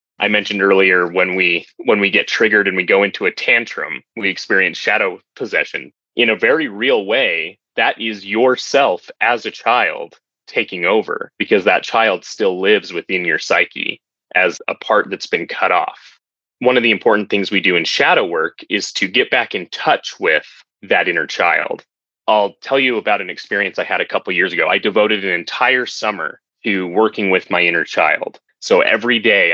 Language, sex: English, male